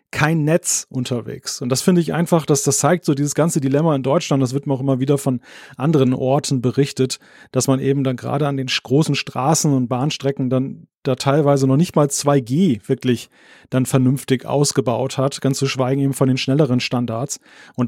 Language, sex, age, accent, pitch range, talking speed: German, male, 30-49, German, 135-155 Hz, 200 wpm